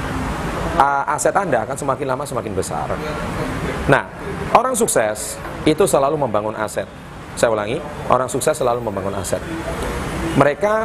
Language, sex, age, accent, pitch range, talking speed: Indonesian, male, 30-49, native, 120-155 Hz, 120 wpm